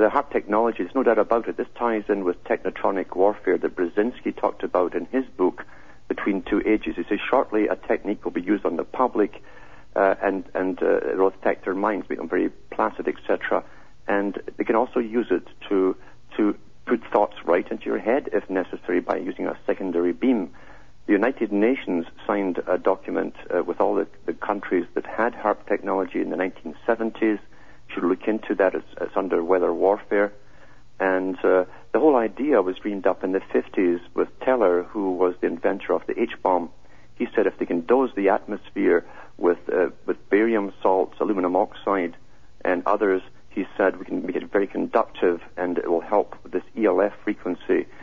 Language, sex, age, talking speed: English, male, 60-79, 185 wpm